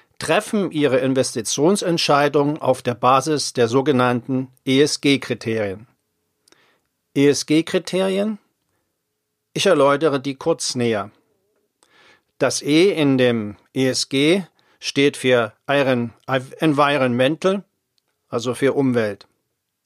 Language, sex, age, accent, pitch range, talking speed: German, male, 50-69, German, 130-160 Hz, 80 wpm